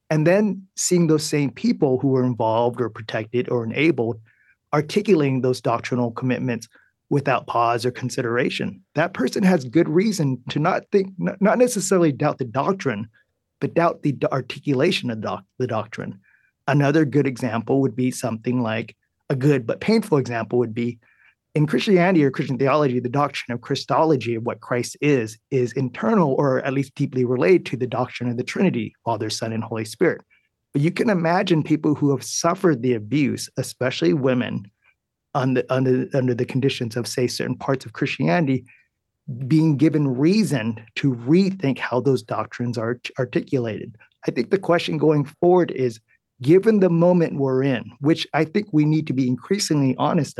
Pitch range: 125-160 Hz